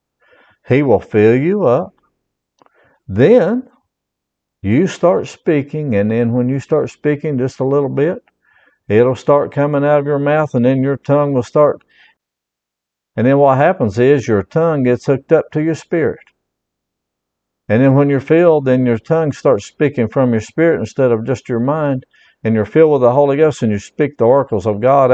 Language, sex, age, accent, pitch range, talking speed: English, male, 60-79, American, 115-145 Hz, 185 wpm